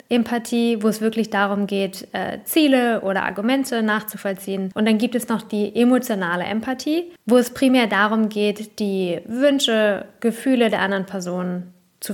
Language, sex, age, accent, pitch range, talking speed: English, female, 20-39, German, 195-240 Hz, 155 wpm